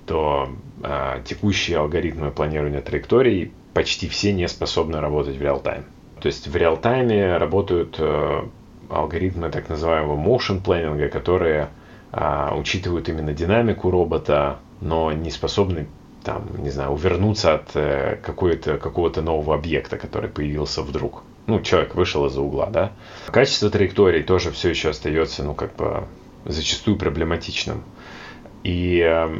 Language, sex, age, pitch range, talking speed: Russian, male, 30-49, 75-95 Hz, 125 wpm